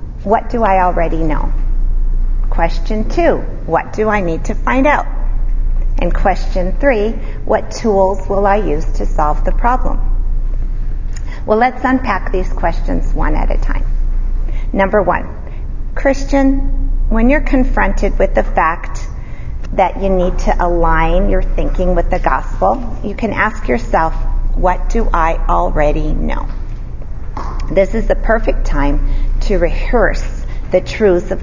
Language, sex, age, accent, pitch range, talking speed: English, female, 40-59, American, 170-245 Hz, 140 wpm